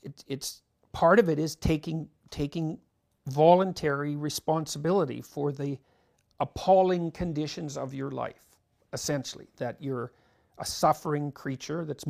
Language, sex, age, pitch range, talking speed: English, male, 50-69, 135-165 Hz, 120 wpm